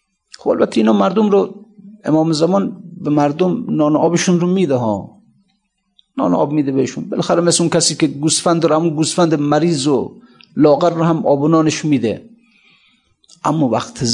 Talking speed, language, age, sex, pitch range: 155 wpm, Persian, 50-69, male, 135-190 Hz